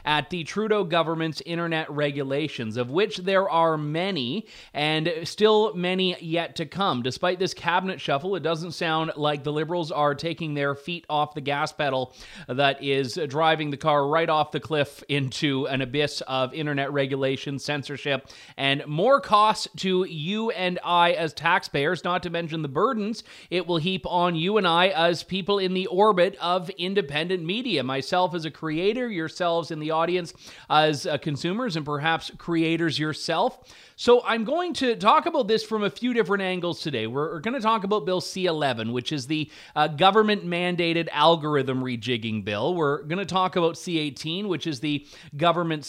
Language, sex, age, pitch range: English, male, 30-49, 150-190 Hz